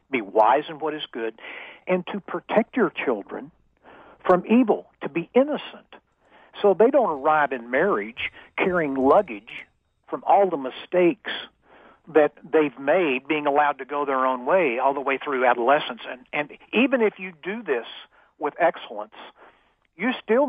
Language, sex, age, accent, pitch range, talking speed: English, male, 60-79, American, 145-195 Hz, 160 wpm